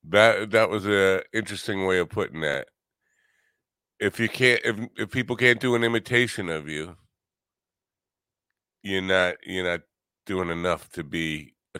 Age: 50-69